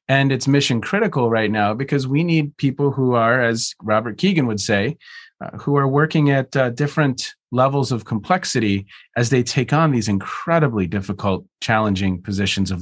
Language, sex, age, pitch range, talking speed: English, male, 30-49, 115-160 Hz, 175 wpm